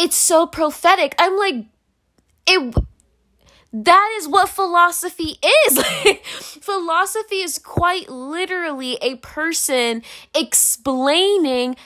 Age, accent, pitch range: 10-29, American, 250-360 Hz